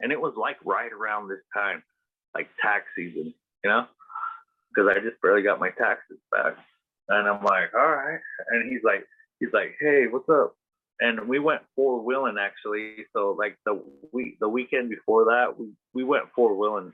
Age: 30-49